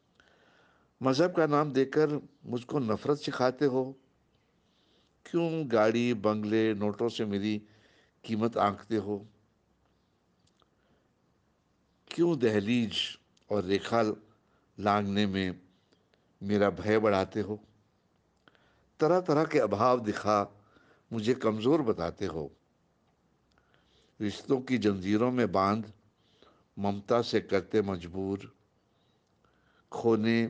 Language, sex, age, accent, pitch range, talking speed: Hindi, male, 60-79, native, 100-125 Hz, 90 wpm